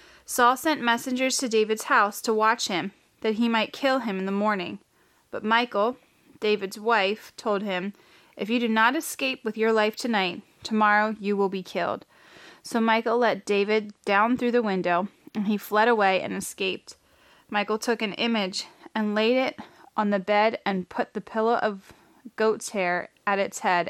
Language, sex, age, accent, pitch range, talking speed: English, female, 20-39, American, 205-240 Hz, 180 wpm